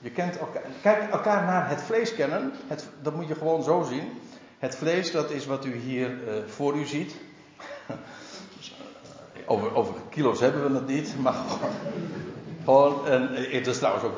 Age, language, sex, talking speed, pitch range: 50-69, Dutch, male, 150 wpm, 140-230 Hz